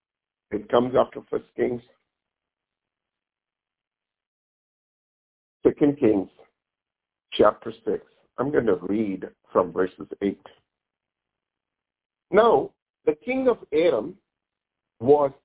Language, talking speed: English, 85 wpm